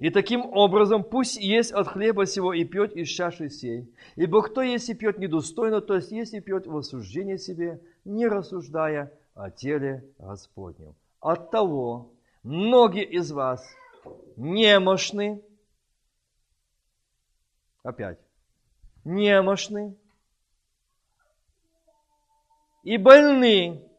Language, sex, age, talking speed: Russian, male, 50-69, 105 wpm